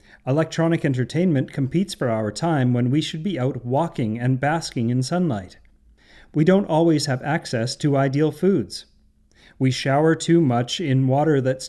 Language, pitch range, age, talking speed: English, 120-165 Hz, 40-59, 160 wpm